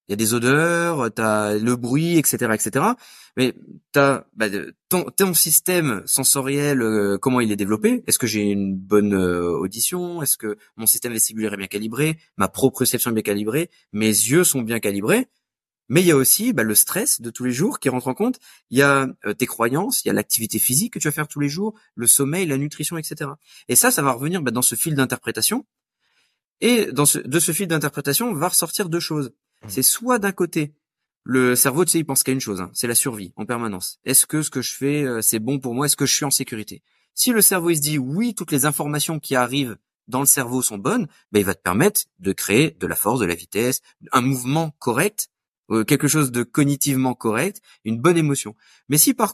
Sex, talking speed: male, 235 wpm